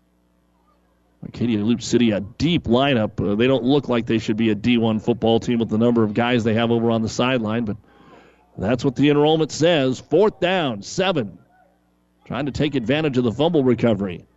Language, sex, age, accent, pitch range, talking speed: English, male, 40-59, American, 120-145 Hz, 190 wpm